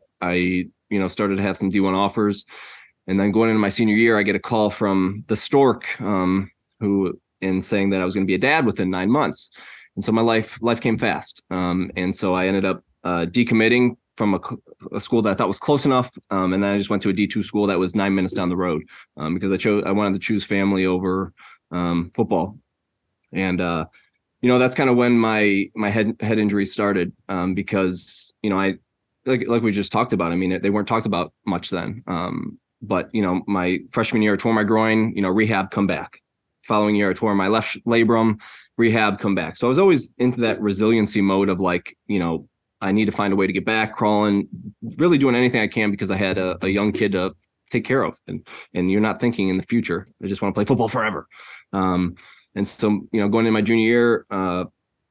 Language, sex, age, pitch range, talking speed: English, male, 20-39, 95-110 Hz, 235 wpm